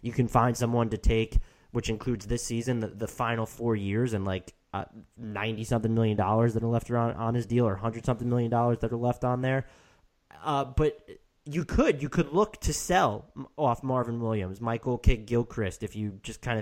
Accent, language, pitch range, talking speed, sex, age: American, English, 110-135 Hz, 200 wpm, male, 20-39